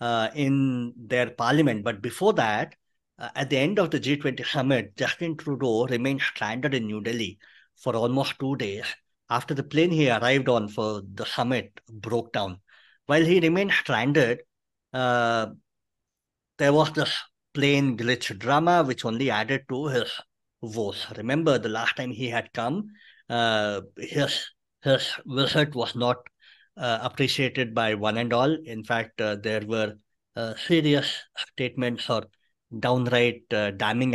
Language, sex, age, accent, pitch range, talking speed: English, male, 50-69, Indian, 110-140 Hz, 150 wpm